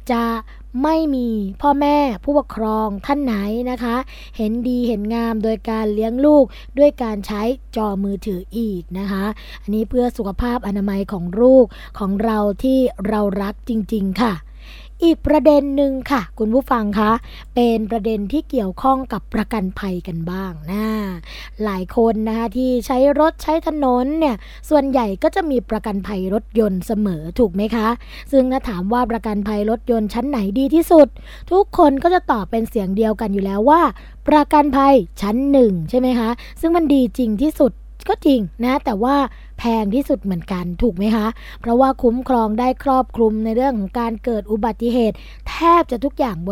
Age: 20-39